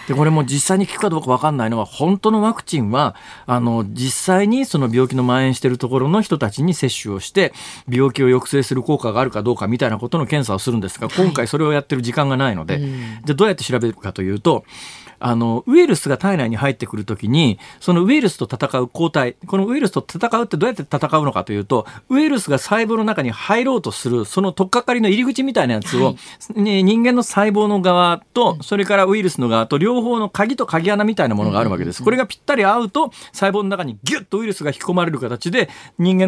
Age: 40-59